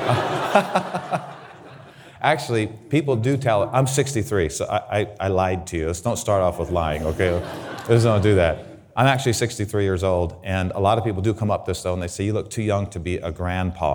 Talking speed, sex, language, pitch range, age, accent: 215 wpm, male, English, 100-145 Hz, 30-49, American